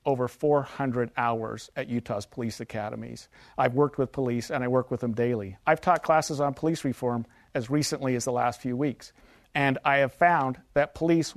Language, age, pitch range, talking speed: English, 50-69, 125-155 Hz, 190 wpm